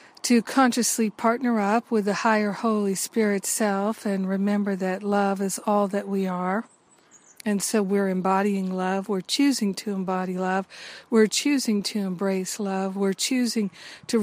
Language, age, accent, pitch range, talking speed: English, 50-69, American, 195-225 Hz, 155 wpm